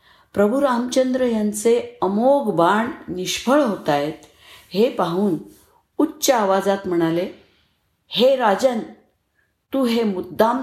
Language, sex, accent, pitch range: Marathi, female, native, 170-235 Hz